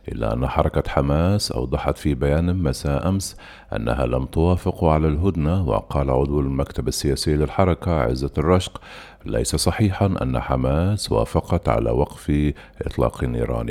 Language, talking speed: Arabic, 130 wpm